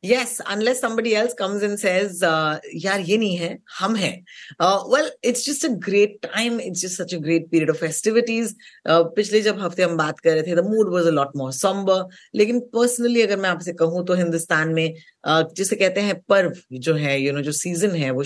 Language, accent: Hindi, native